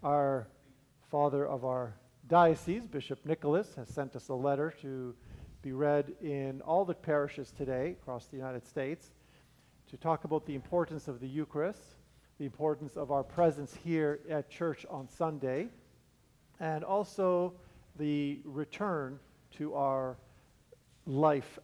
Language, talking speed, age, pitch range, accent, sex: English, 135 wpm, 50-69, 135-175 Hz, American, male